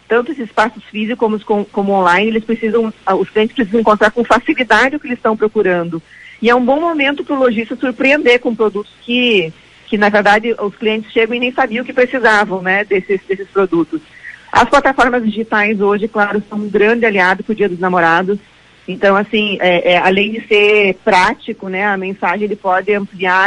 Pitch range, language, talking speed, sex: 195-230 Hz, Portuguese, 200 wpm, female